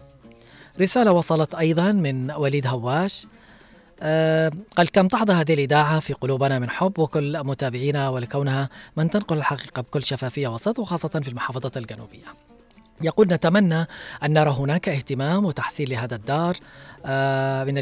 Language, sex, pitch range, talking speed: Arabic, female, 130-165 Hz, 130 wpm